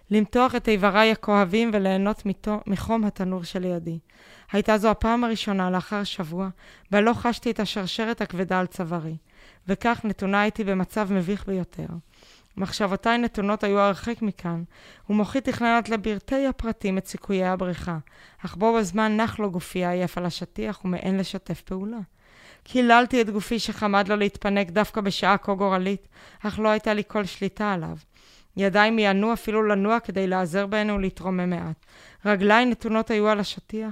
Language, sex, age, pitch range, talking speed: Hebrew, female, 20-39, 185-215 Hz, 145 wpm